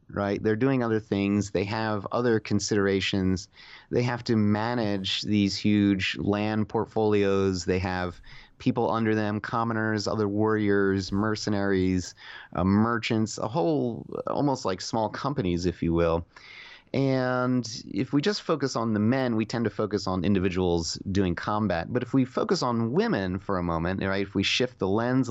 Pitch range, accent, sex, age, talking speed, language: 95-115 Hz, American, male, 30-49, 160 wpm, English